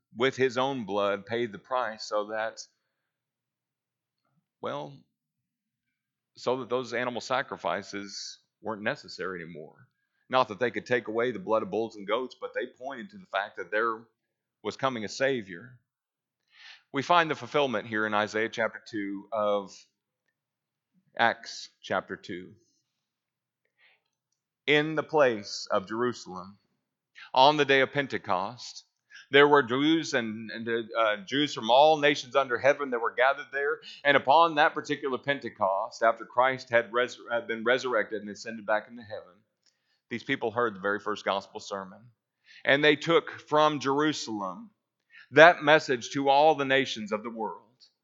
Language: English